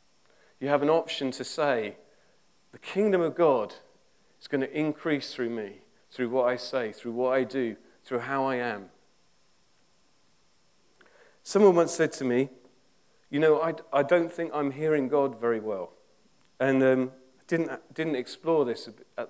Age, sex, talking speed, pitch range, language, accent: 40-59, male, 160 wpm, 130-165 Hz, English, British